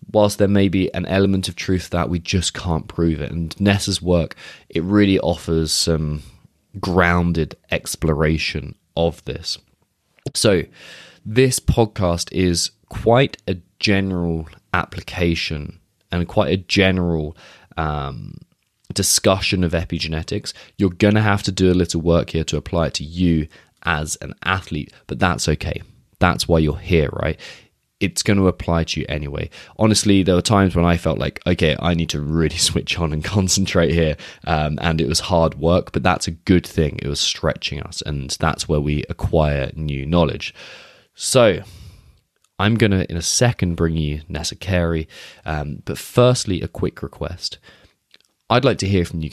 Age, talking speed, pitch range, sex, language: 20-39, 165 wpm, 80-95 Hz, male, English